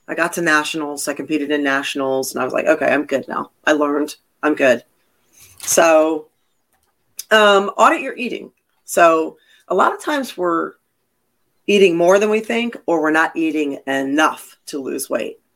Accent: American